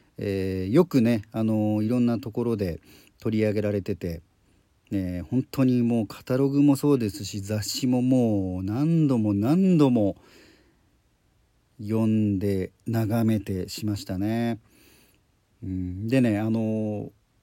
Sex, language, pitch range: male, Japanese, 100-145 Hz